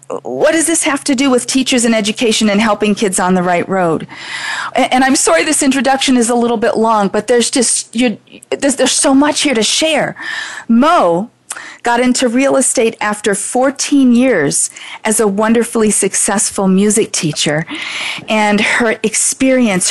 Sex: female